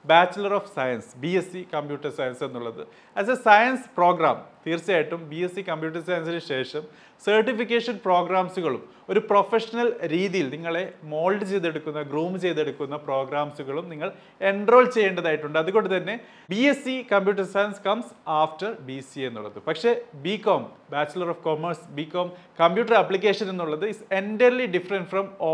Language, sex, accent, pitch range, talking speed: Malayalam, male, native, 155-200 Hz, 145 wpm